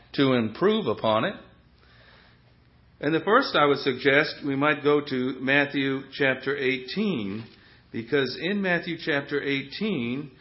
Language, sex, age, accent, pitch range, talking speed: English, male, 60-79, American, 125-155 Hz, 125 wpm